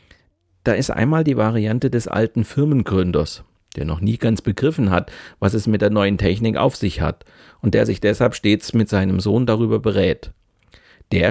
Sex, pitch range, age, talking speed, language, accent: male, 100-125 Hz, 40-59, 180 wpm, German, German